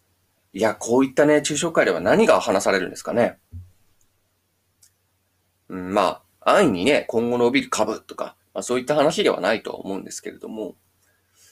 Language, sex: Japanese, male